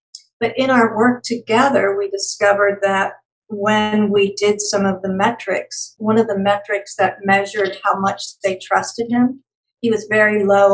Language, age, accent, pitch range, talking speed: English, 60-79, American, 200-235 Hz, 170 wpm